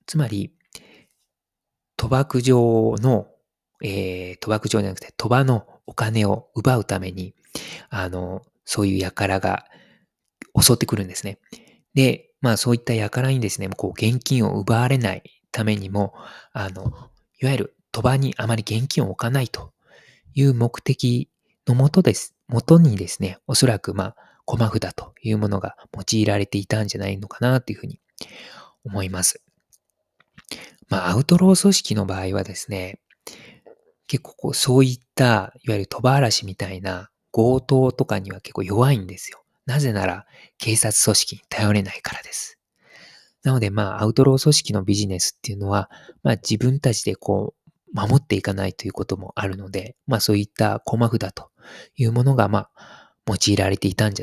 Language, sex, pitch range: Japanese, male, 100-130 Hz